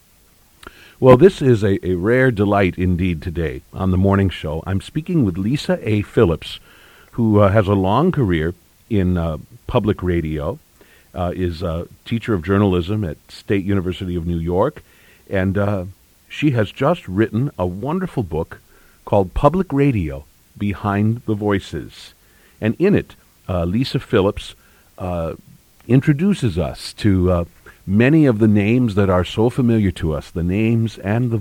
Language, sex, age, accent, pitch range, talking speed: English, male, 50-69, American, 90-115 Hz, 155 wpm